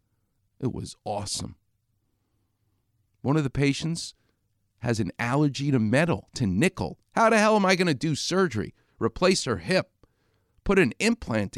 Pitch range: 100-135 Hz